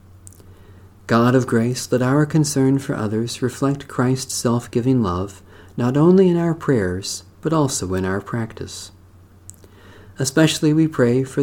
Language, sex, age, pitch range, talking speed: English, male, 40-59, 95-135 Hz, 135 wpm